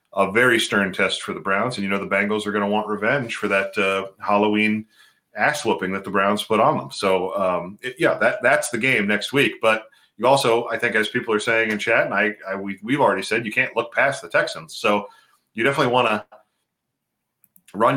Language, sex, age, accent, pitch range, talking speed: English, male, 40-59, American, 100-125 Hz, 225 wpm